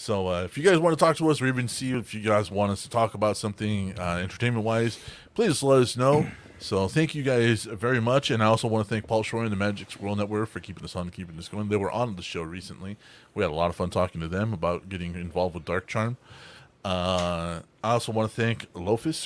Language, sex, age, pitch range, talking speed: English, male, 30-49, 95-120 Hz, 255 wpm